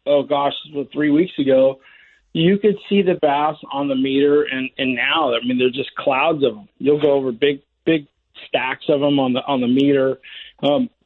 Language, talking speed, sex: English, 200 wpm, male